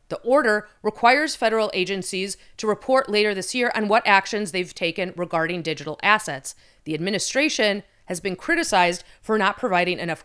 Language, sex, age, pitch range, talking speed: English, female, 30-49, 180-235 Hz, 160 wpm